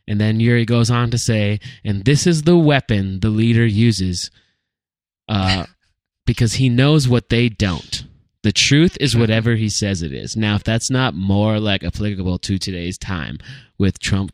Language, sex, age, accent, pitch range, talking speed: English, male, 20-39, American, 95-125 Hz, 175 wpm